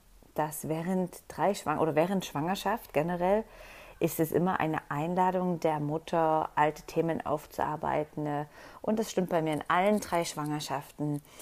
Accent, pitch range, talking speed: German, 155-185 Hz, 140 wpm